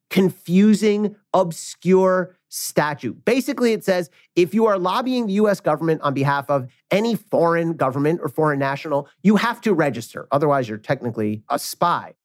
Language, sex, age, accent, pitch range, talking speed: English, male, 30-49, American, 150-210 Hz, 150 wpm